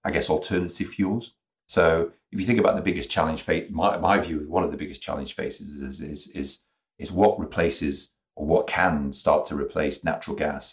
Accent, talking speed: British, 205 wpm